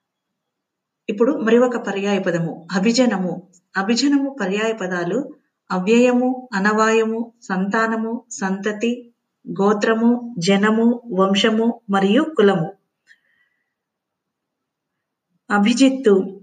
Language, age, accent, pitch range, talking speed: Telugu, 50-69, native, 195-245 Hz, 70 wpm